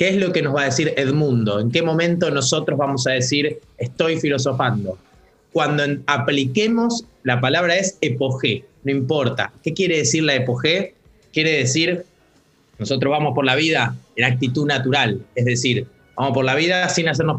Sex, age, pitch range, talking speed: male, 30-49, 125-175 Hz, 170 wpm